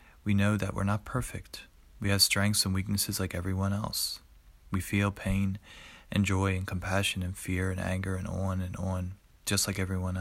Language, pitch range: English, 95-105 Hz